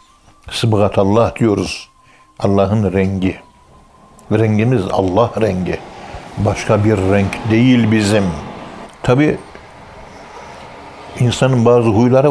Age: 60-79